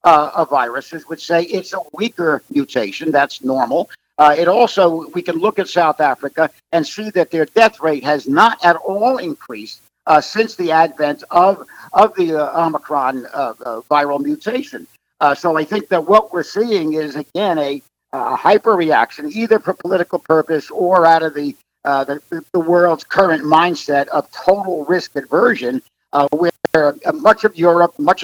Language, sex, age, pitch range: English, male, 50-69, 150-195 Hz